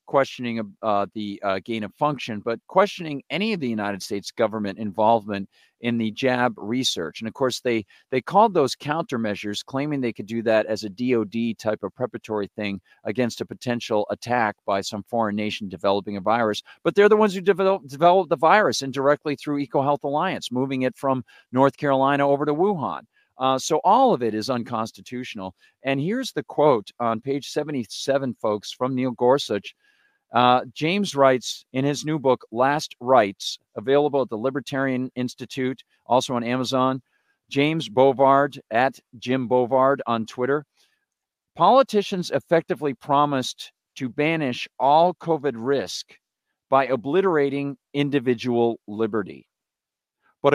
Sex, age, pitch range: male, 50-69, 115-150 Hz